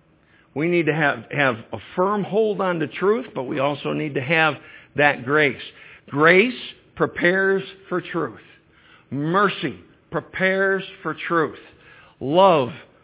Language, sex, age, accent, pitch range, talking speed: English, male, 60-79, American, 145-195 Hz, 130 wpm